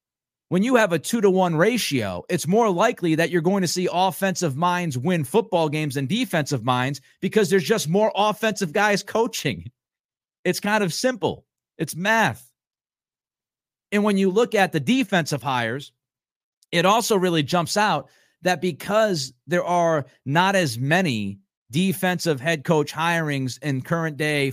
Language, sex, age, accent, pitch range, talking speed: English, male, 50-69, American, 145-195 Hz, 155 wpm